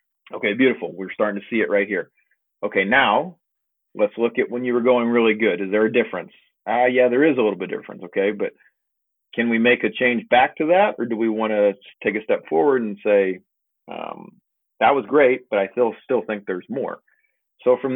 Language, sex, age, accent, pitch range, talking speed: English, male, 40-59, American, 100-120 Hz, 225 wpm